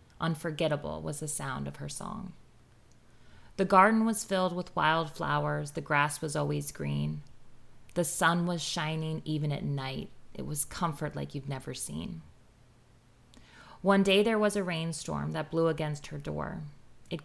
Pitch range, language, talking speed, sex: 125-160 Hz, English, 155 wpm, female